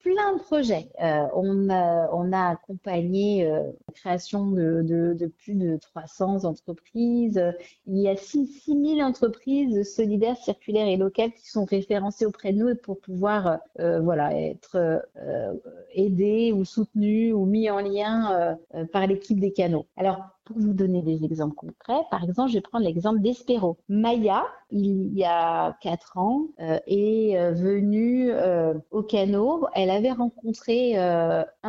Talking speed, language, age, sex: 160 wpm, French, 40-59, female